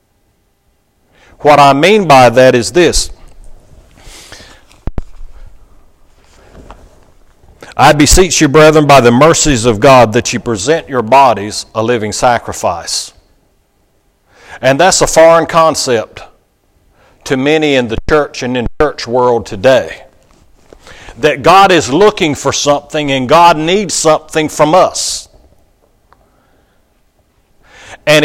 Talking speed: 115 wpm